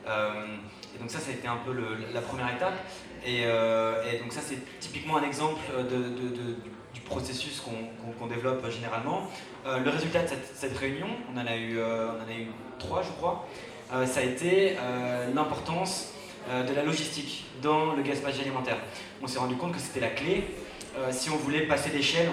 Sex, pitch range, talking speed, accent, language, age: male, 115-140 Hz, 210 wpm, French, French, 20-39